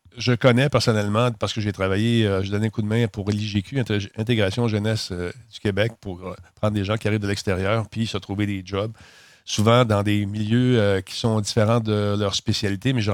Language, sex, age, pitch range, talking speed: French, male, 50-69, 100-120 Hz, 220 wpm